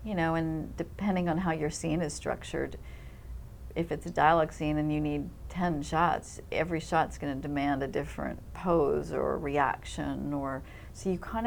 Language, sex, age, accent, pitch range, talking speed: English, female, 40-59, American, 140-160 Hz, 180 wpm